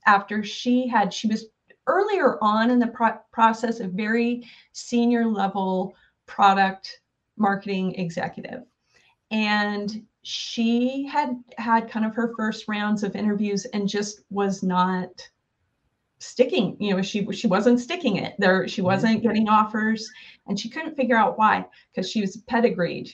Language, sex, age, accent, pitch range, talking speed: English, female, 30-49, American, 195-235 Hz, 145 wpm